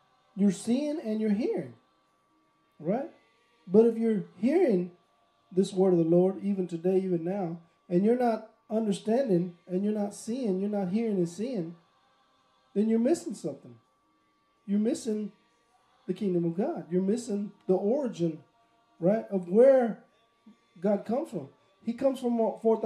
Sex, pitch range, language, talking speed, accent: male, 185-235 Hz, English, 145 wpm, American